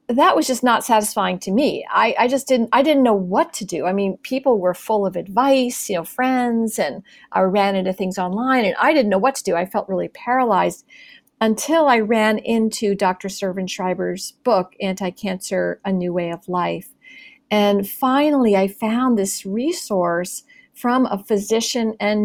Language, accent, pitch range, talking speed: English, American, 195-255 Hz, 185 wpm